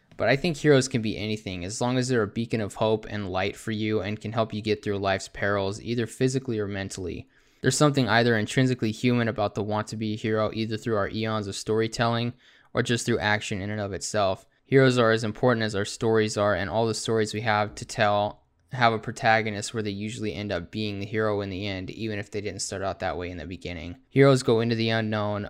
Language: English